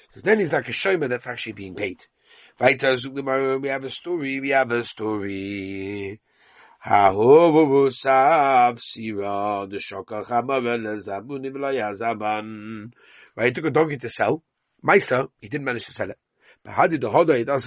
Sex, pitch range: male, 110-155 Hz